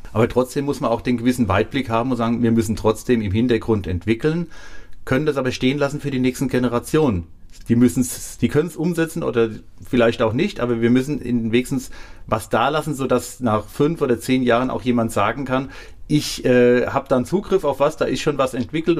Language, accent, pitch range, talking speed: German, German, 110-135 Hz, 205 wpm